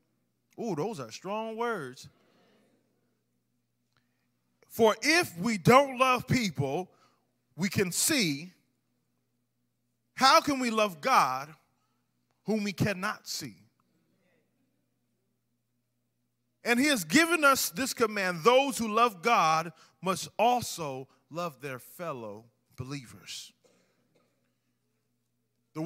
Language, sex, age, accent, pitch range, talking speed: English, male, 30-49, American, 125-210 Hz, 95 wpm